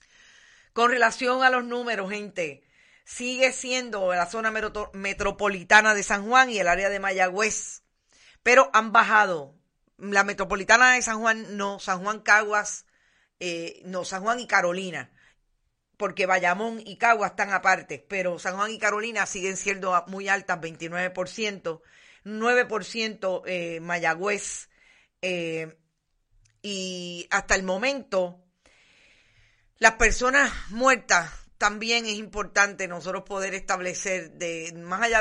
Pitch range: 180-215 Hz